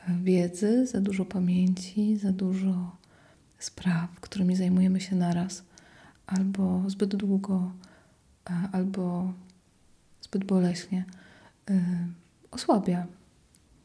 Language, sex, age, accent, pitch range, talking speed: Polish, female, 30-49, native, 185-220 Hz, 80 wpm